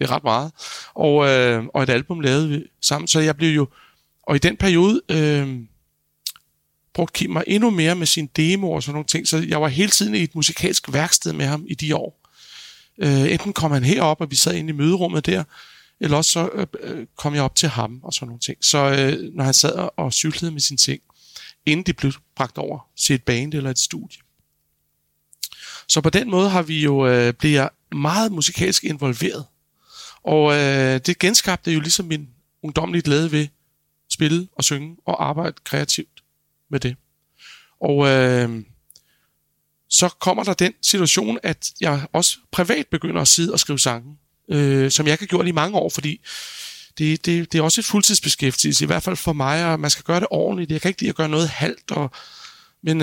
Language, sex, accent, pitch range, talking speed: Danish, male, native, 140-175 Hz, 200 wpm